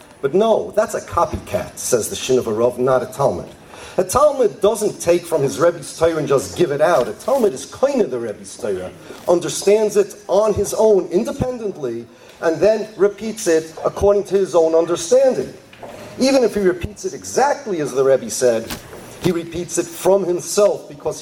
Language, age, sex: English, 40-59, male